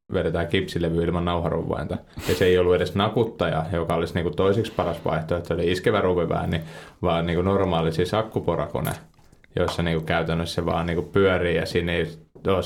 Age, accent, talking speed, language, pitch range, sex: 30-49, native, 170 wpm, Finnish, 85-100 Hz, male